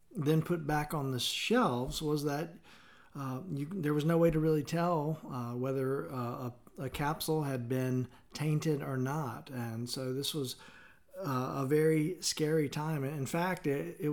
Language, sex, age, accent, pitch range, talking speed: English, male, 50-69, American, 120-150 Hz, 175 wpm